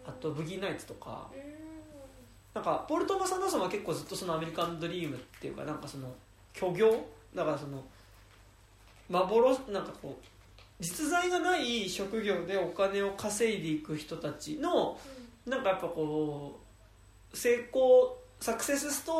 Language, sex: Japanese, male